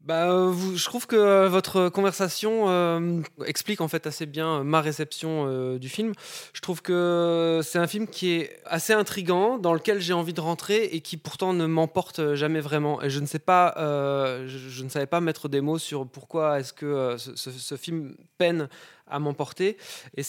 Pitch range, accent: 140-175 Hz, French